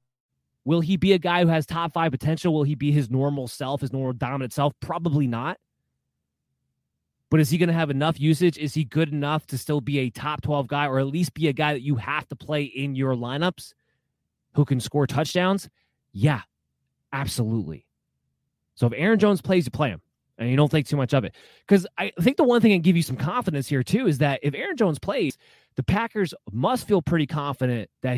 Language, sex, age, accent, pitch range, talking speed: English, male, 20-39, American, 130-160 Hz, 215 wpm